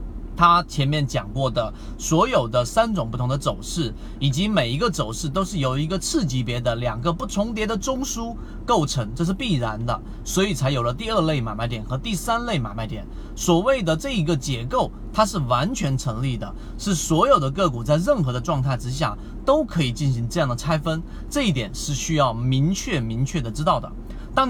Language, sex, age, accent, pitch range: Chinese, male, 30-49, native, 125-190 Hz